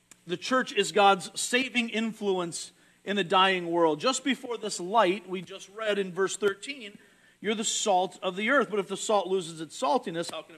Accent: American